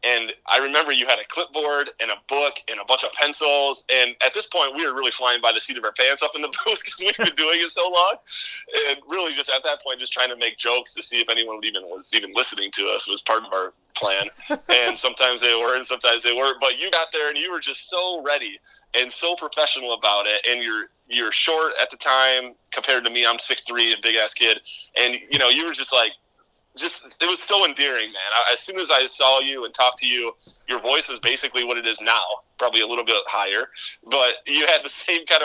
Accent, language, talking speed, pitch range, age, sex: American, English, 245 wpm, 120-165 Hz, 30-49, male